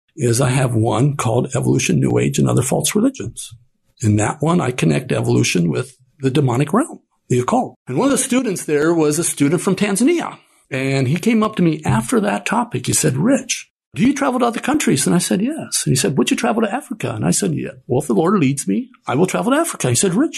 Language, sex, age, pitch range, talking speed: English, male, 60-79, 140-220 Hz, 245 wpm